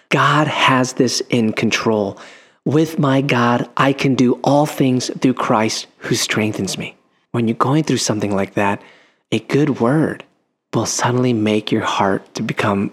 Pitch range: 115-145 Hz